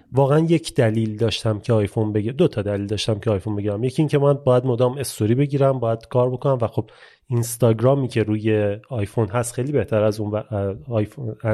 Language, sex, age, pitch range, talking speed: Persian, male, 30-49, 115-145 Hz, 195 wpm